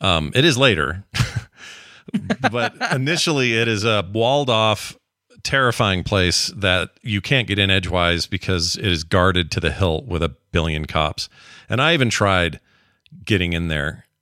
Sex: male